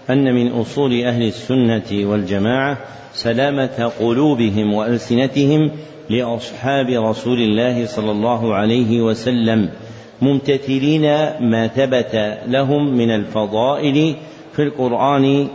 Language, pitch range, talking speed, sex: Arabic, 115-140 Hz, 95 wpm, male